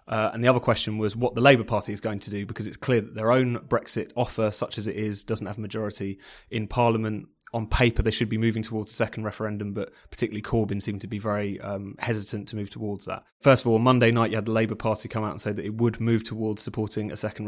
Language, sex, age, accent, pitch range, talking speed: English, male, 30-49, British, 105-115 Hz, 265 wpm